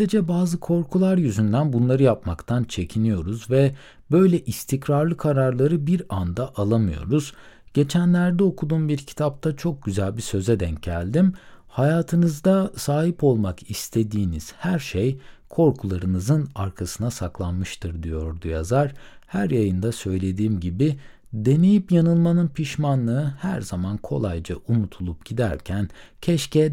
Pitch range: 90-140 Hz